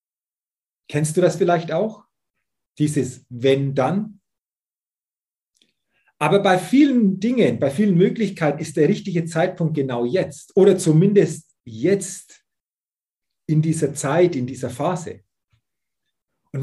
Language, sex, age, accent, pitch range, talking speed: German, male, 40-59, German, 140-185 Hz, 110 wpm